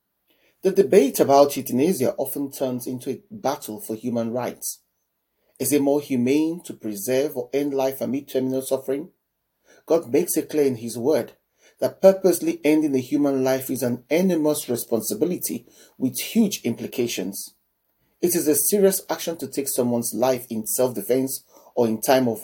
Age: 40-59